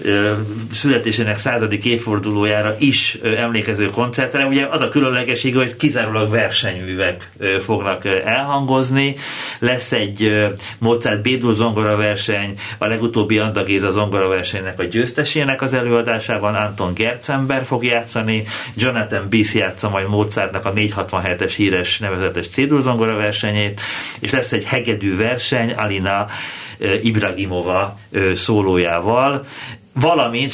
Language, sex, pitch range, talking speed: Hungarian, male, 100-120 Hz, 105 wpm